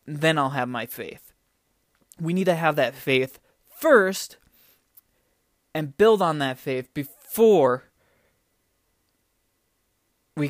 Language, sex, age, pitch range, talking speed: English, male, 20-39, 140-200 Hz, 110 wpm